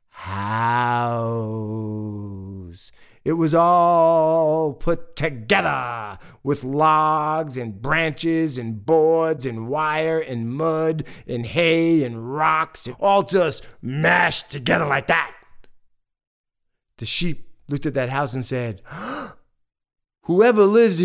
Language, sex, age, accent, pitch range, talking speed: English, male, 30-49, American, 110-160 Hz, 105 wpm